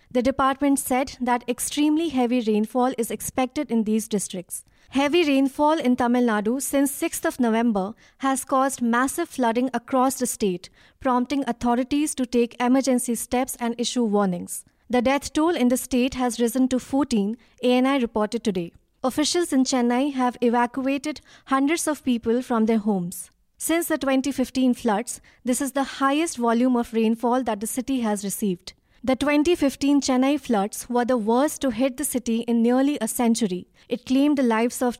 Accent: Indian